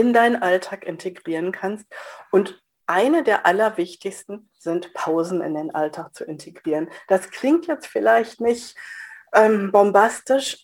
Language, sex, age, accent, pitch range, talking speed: German, female, 50-69, German, 185-245 Hz, 130 wpm